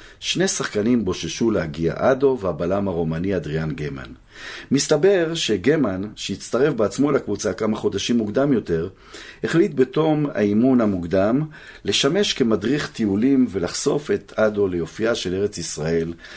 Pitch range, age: 90-120 Hz, 50-69